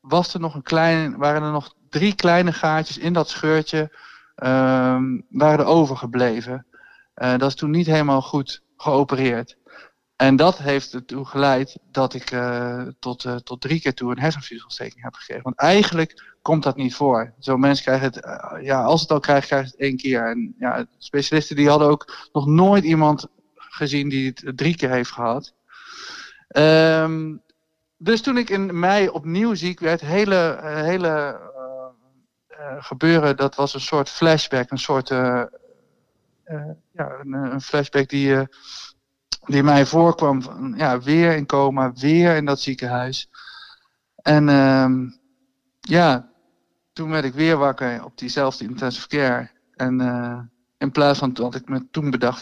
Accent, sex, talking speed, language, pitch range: Dutch, male, 160 wpm, Dutch, 130-160 Hz